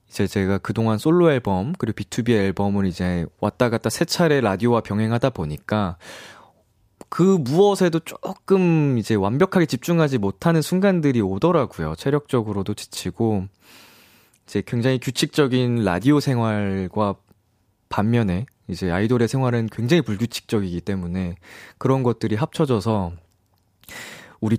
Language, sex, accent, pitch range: Korean, male, native, 100-140 Hz